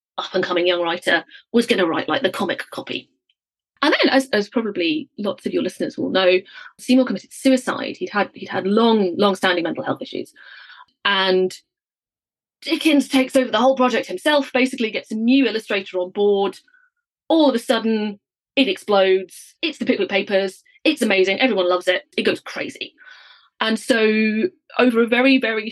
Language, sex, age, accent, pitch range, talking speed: English, female, 30-49, British, 195-275 Hz, 170 wpm